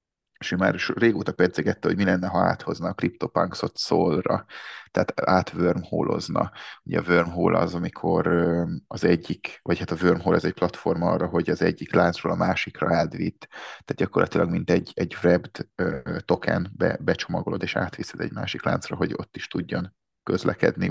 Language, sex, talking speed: Hungarian, male, 160 wpm